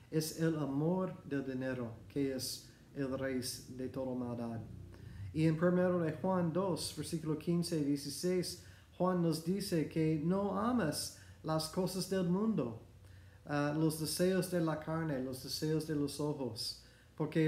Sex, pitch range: male, 130-170 Hz